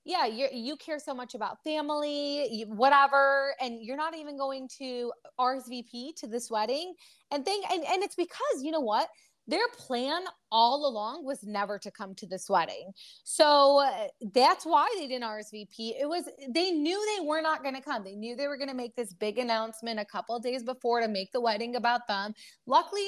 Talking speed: 205 wpm